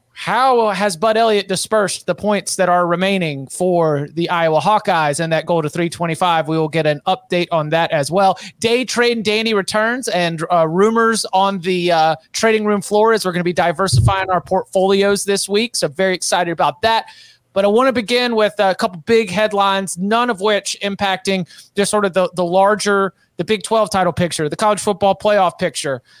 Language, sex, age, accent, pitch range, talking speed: English, male, 30-49, American, 175-215 Hz, 200 wpm